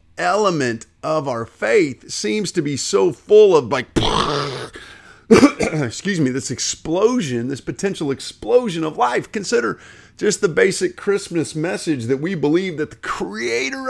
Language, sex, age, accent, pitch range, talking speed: English, male, 40-59, American, 115-190 Hz, 140 wpm